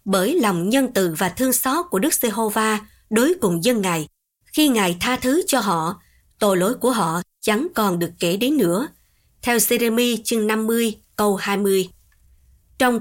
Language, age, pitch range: Vietnamese, 20-39, 190-255 Hz